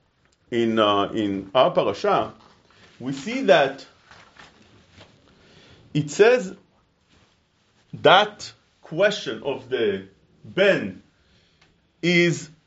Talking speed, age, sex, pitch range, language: 75 wpm, 50-69, male, 135-215 Hz, English